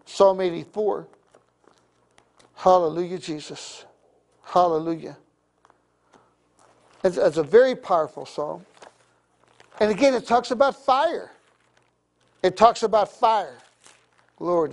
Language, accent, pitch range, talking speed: English, American, 175-240 Hz, 90 wpm